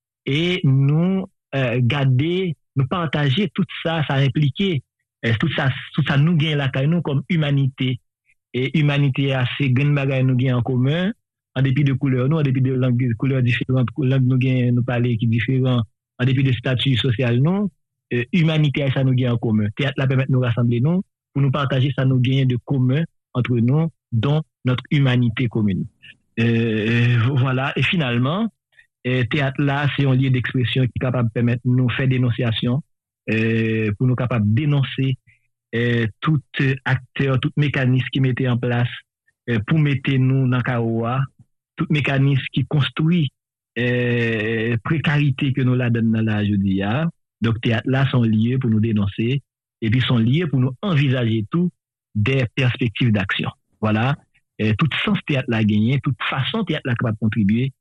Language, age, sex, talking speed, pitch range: French, 50-69, male, 180 wpm, 120-140 Hz